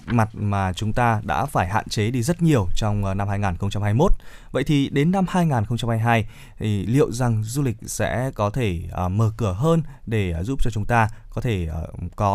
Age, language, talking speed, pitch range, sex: 20-39, Vietnamese, 185 wpm, 105-135 Hz, male